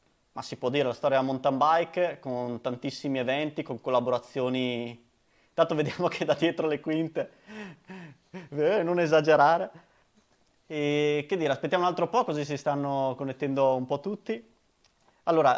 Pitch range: 130-175 Hz